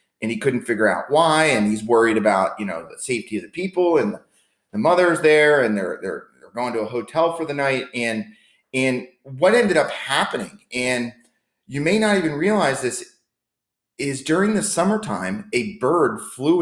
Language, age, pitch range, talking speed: English, 30-49, 110-155 Hz, 190 wpm